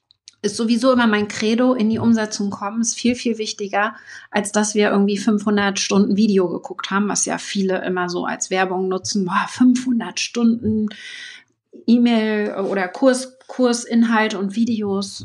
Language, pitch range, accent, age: German, 200-250 Hz, German, 30-49